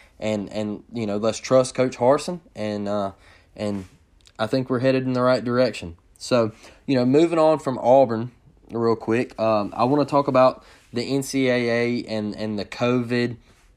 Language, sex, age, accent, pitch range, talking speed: English, male, 20-39, American, 105-140 Hz, 175 wpm